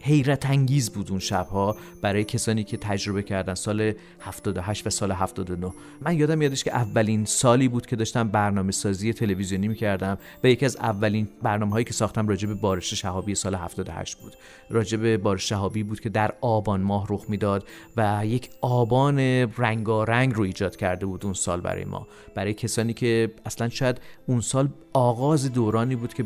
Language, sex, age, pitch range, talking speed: Persian, male, 40-59, 105-125 Hz, 175 wpm